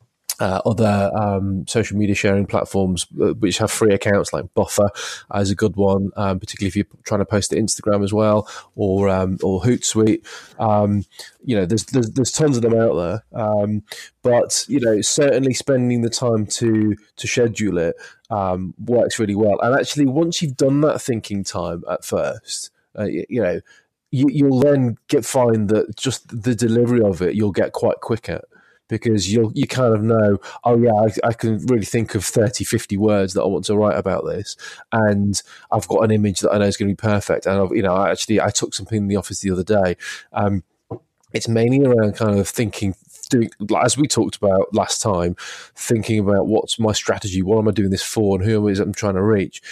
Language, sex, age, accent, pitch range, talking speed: English, male, 20-39, British, 100-115 Hz, 210 wpm